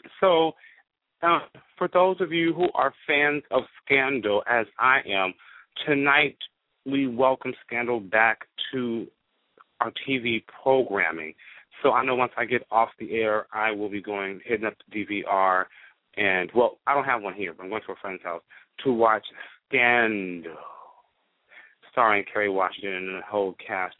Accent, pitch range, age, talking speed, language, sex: American, 105-170 Hz, 30-49, 160 wpm, English, male